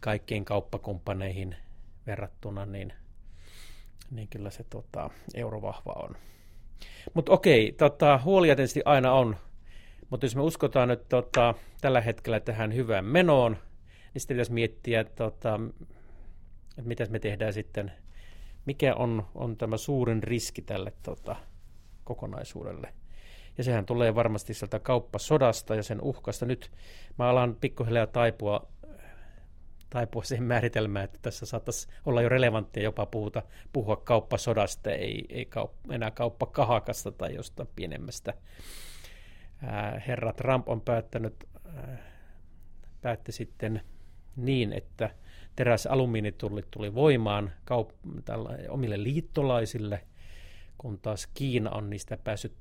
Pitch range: 95-125 Hz